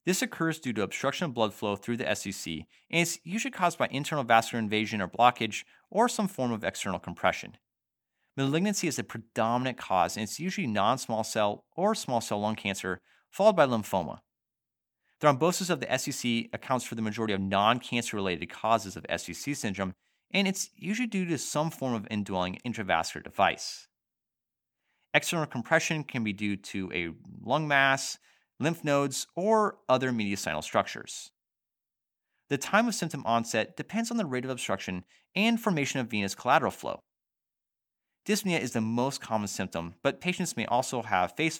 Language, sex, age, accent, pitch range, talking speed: English, male, 30-49, American, 110-160 Hz, 165 wpm